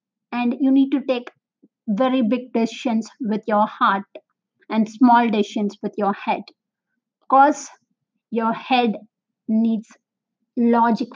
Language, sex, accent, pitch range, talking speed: Telugu, female, native, 220-260 Hz, 125 wpm